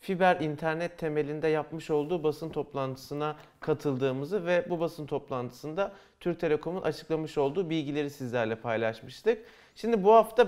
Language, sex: Turkish, male